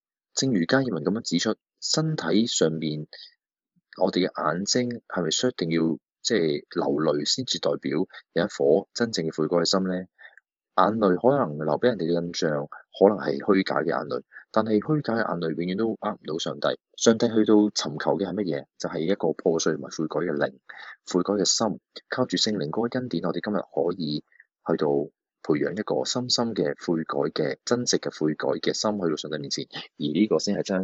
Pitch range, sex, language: 80-110 Hz, male, Chinese